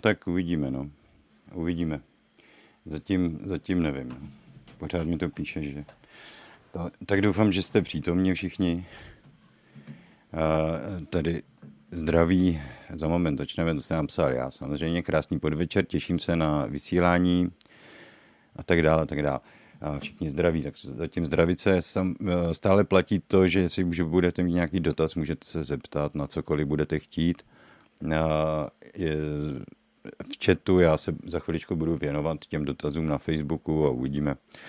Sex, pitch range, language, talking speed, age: male, 75-90 Hz, Czech, 140 wpm, 50-69